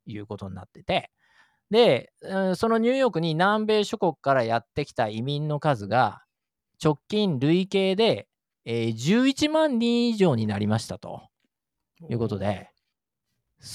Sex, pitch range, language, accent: male, 115-190 Hz, Japanese, native